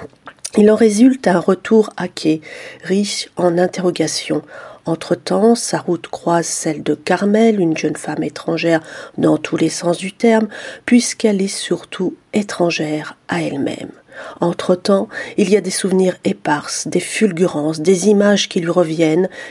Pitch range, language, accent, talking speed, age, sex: 165-205 Hz, French, French, 145 wpm, 40-59, female